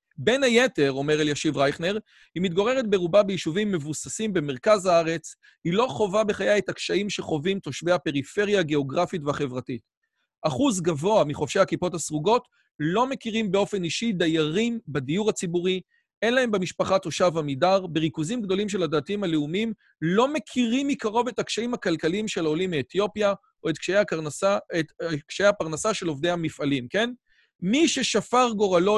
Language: Hebrew